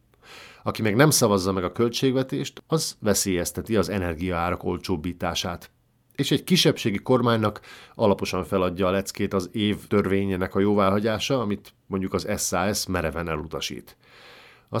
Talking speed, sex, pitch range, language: 130 wpm, male, 95-110 Hz, Hungarian